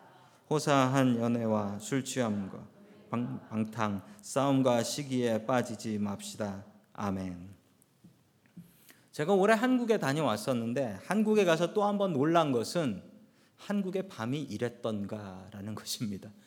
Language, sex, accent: Korean, male, native